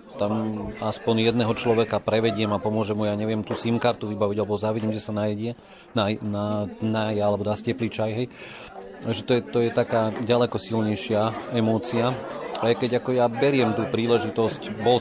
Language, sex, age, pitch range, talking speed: Slovak, male, 40-59, 105-115 Hz, 165 wpm